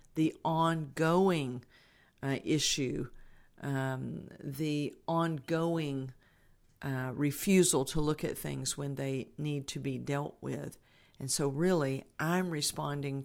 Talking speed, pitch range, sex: 115 wpm, 135-160 Hz, female